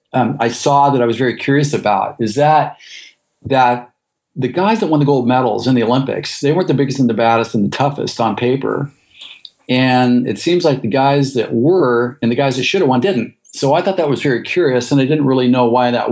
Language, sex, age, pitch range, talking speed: English, male, 50-69, 115-135 Hz, 240 wpm